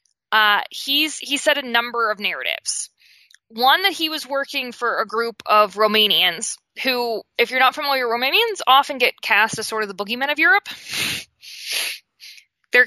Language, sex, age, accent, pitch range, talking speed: English, female, 20-39, American, 205-275 Hz, 170 wpm